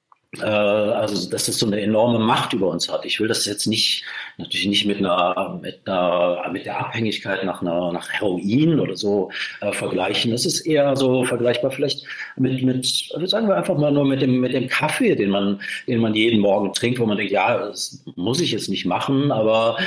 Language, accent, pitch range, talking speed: German, German, 105-130 Hz, 205 wpm